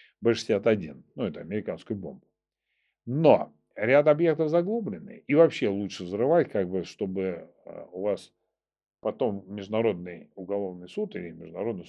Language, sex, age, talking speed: Russian, male, 40-59, 125 wpm